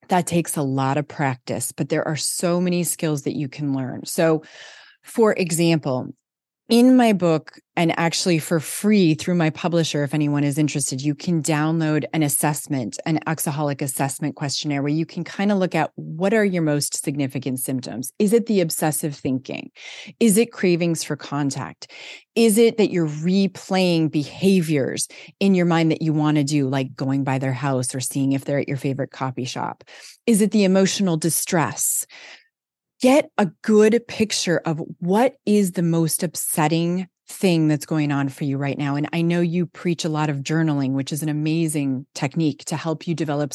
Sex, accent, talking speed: female, American, 185 wpm